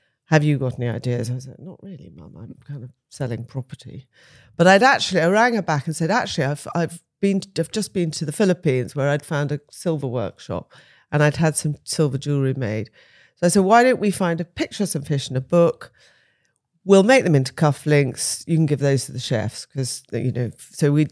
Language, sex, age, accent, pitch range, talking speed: English, female, 40-59, British, 130-160 Hz, 225 wpm